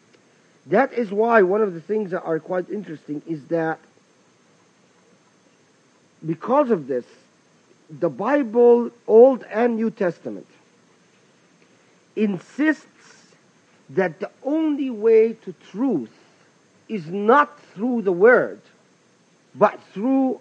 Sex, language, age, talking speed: male, English, 50-69, 105 wpm